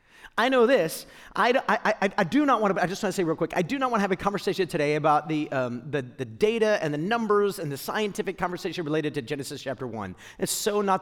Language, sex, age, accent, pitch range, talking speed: English, male, 40-59, American, 160-225 Hz, 245 wpm